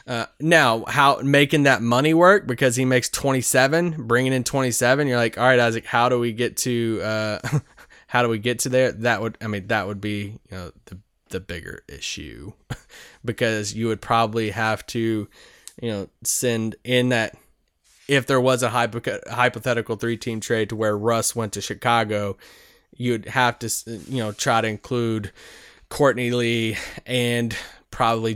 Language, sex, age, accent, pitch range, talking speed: English, male, 20-39, American, 110-130 Hz, 180 wpm